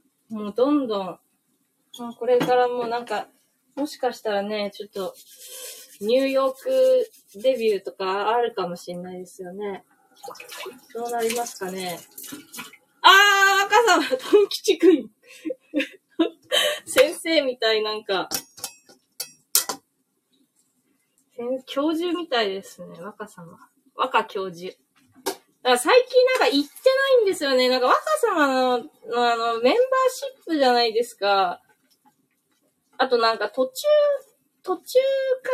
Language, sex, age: Japanese, female, 20-39